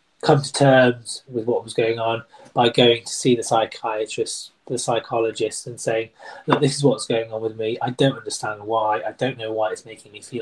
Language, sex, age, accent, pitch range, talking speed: English, male, 20-39, British, 115-155 Hz, 220 wpm